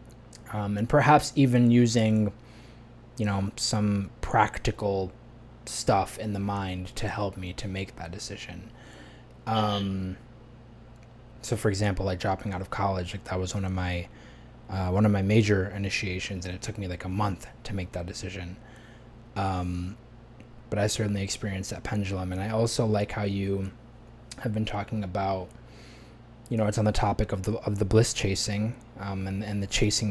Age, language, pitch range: 20-39, English, 100-120 Hz